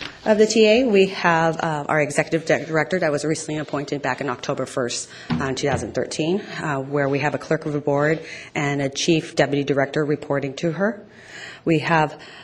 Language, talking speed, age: English, 185 wpm, 30-49